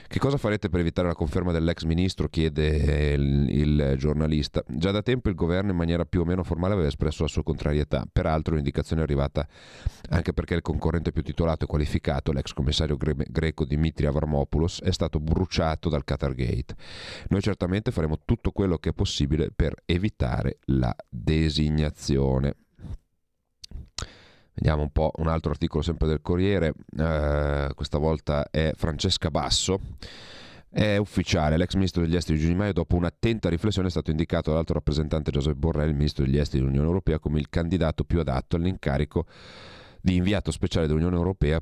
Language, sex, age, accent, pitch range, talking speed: Italian, male, 40-59, native, 75-90 Hz, 165 wpm